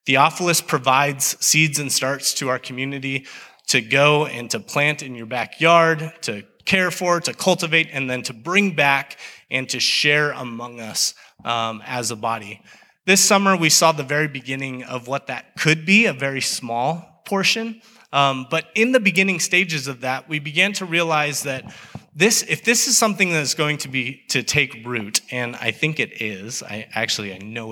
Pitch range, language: 125-160 Hz, English